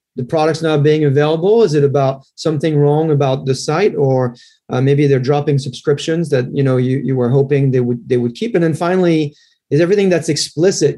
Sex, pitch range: male, 135-160 Hz